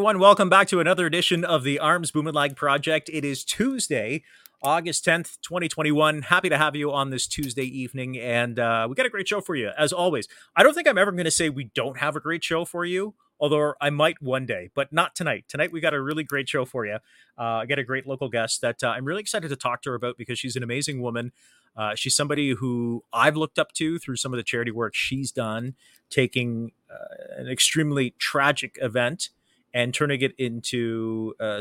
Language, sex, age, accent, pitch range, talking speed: English, male, 30-49, American, 120-160 Hz, 225 wpm